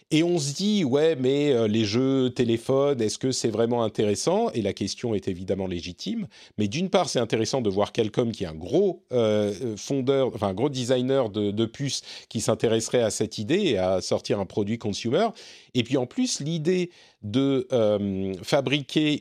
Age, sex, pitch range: 40-59, male, 110-145 Hz